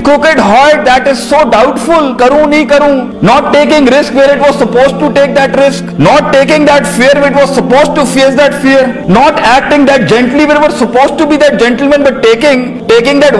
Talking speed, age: 210 wpm, 50-69